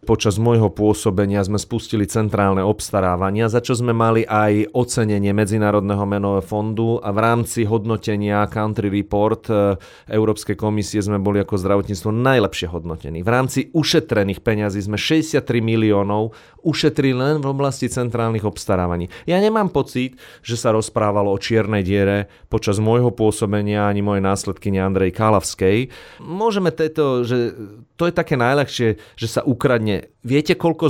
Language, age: Slovak, 30-49